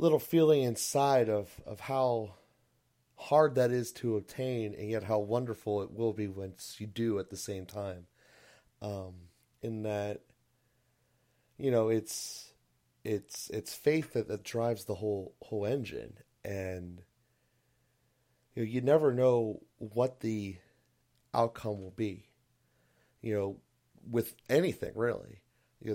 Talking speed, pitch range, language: 135 wpm, 100-120 Hz, English